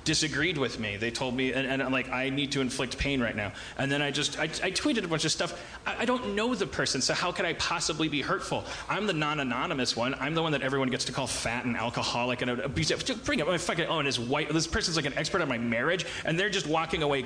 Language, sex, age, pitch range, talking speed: English, male, 30-49, 135-175 Hz, 275 wpm